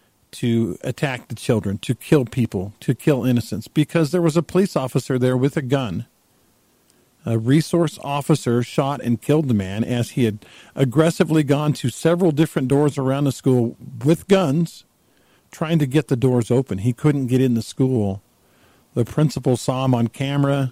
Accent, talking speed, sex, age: American, 175 wpm, male, 50-69